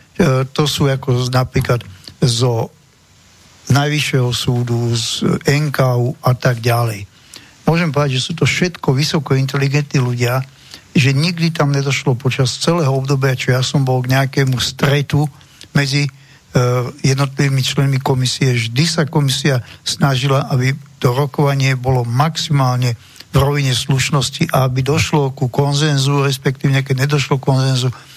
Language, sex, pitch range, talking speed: Slovak, male, 125-145 Hz, 130 wpm